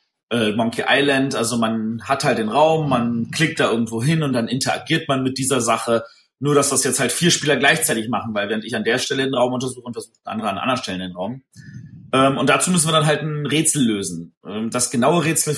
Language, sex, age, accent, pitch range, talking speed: German, male, 30-49, German, 115-150 Hz, 235 wpm